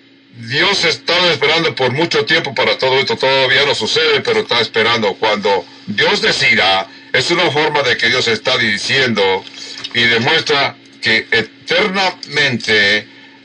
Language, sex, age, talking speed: English, male, 60-79, 135 wpm